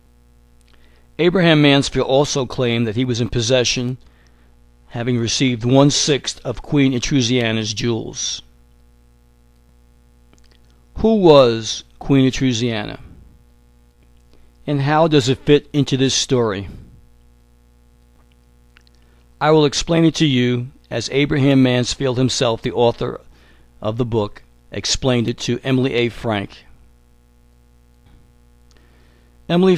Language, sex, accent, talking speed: English, male, American, 100 wpm